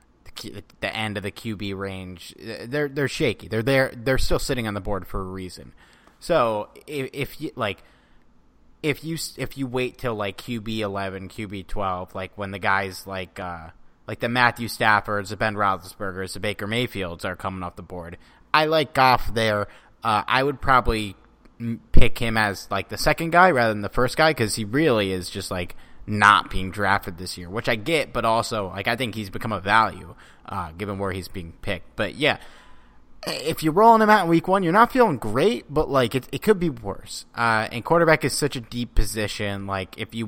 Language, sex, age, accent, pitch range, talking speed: English, male, 30-49, American, 100-125 Hz, 205 wpm